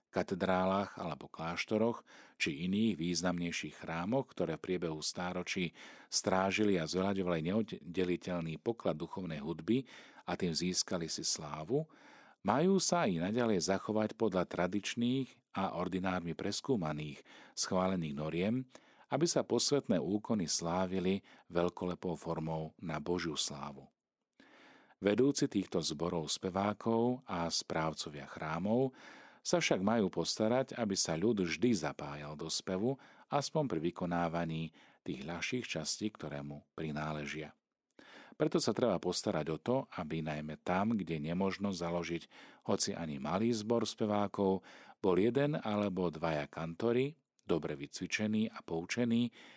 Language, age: Slovak, 40-59